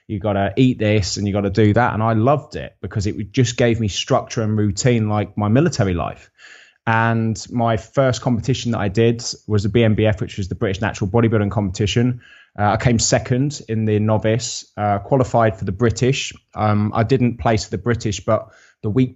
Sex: male